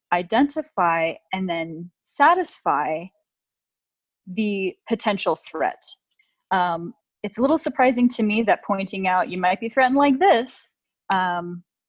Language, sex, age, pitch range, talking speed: English, female, 20-39, 180-250 Hz, 120 wpm